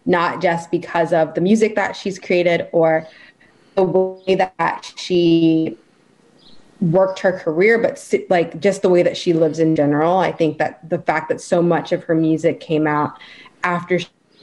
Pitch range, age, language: 160-185 Hz, 20-39, English